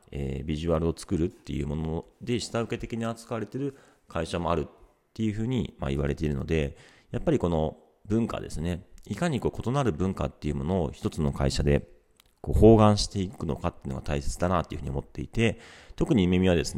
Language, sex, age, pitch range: Japanese, male, 40-59, 75-105 Hz